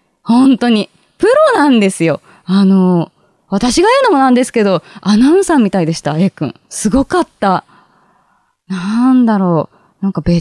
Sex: female